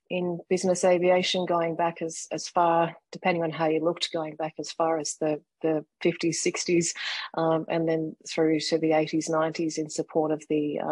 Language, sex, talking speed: English, female, 185 wpm